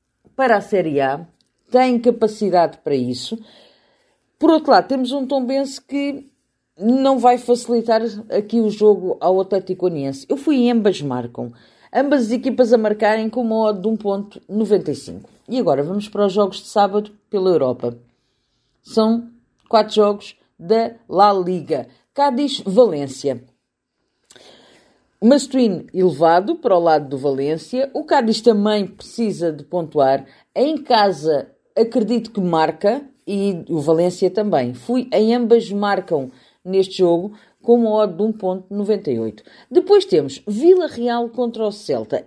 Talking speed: 140 wpm